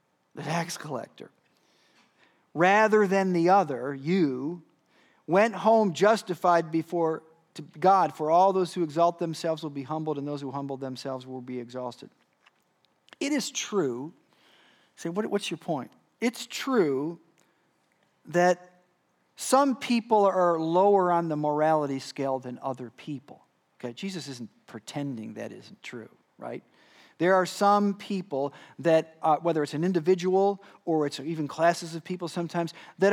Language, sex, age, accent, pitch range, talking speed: English, male, 50-69, American, 155-200 Hz, 145 wpm